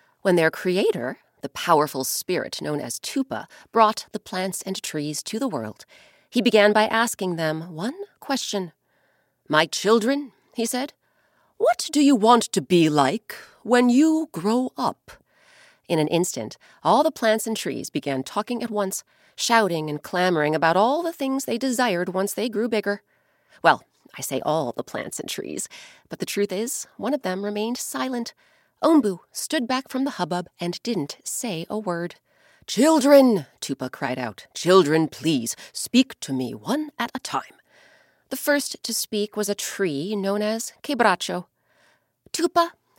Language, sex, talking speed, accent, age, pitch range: English, female, 160 wpm, American, 40-59, 175-265 Hz